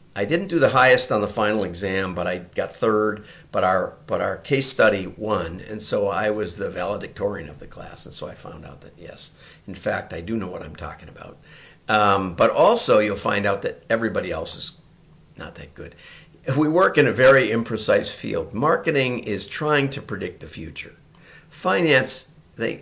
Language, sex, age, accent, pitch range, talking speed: English, male, 50-69, American, 95-135 Hz, 195 wpm